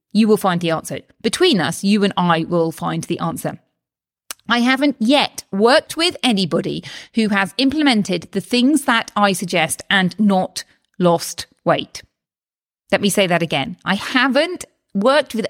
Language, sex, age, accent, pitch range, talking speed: English, female, 30-49, British, 180-250 Hz, 160 wpm